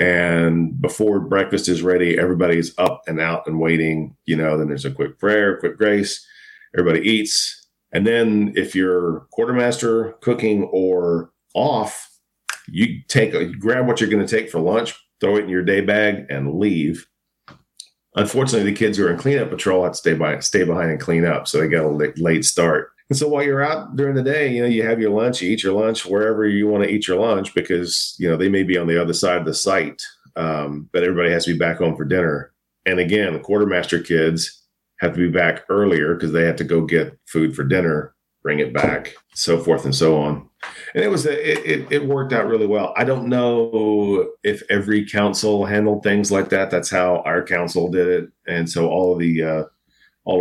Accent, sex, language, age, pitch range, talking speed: American, male, English, 40-59, 85-110 Hz, 215 wpm